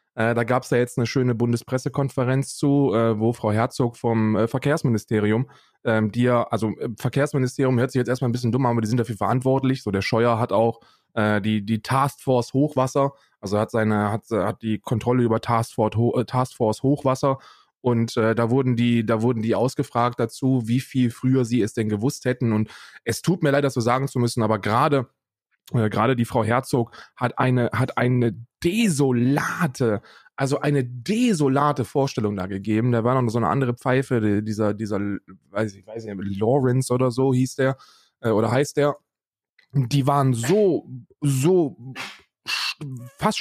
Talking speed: 180 wpm